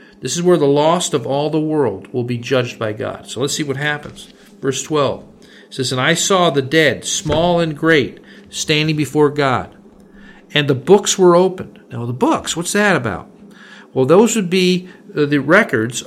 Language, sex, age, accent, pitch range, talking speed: English, male, 50-69, American, 130-185 Hz, 185 wpm